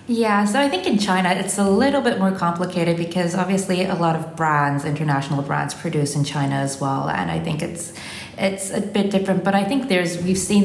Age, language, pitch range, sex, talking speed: 20-39, English, 150-180 Hz, female, 220 wpm